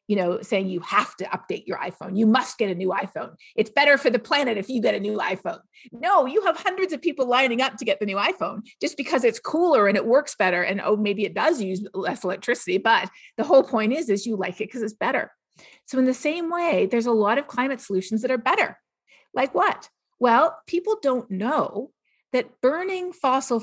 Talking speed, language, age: 230 wpm, English, 40-59